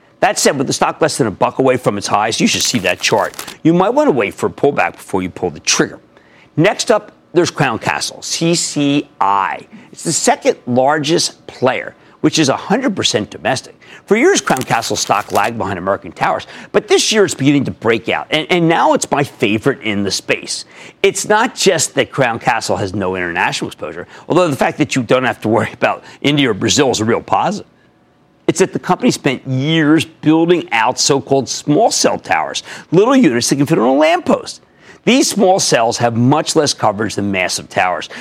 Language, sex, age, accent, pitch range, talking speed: English, male, 50-69, American, 125-195 Hz, 205 wpm